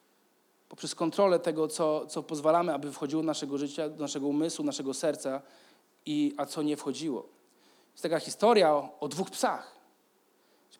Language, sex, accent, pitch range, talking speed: Polish, male, native, 185-260 Hz, 160 wpm